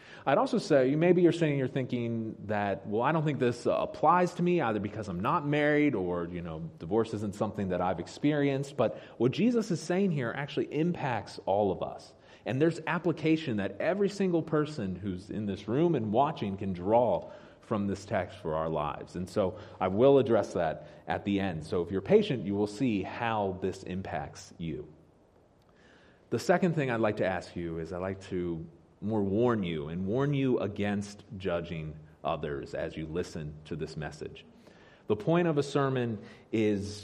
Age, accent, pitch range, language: 30-49, American, 95-140 Hz, English